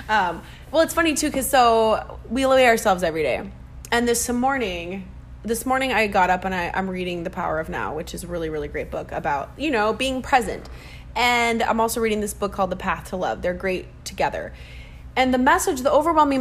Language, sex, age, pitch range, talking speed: English, female, 20-39, 190-245 Hz, 215 wpm